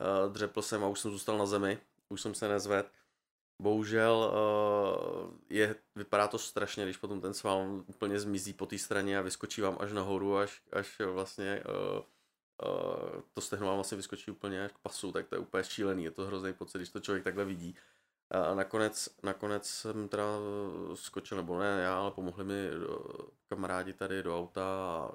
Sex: male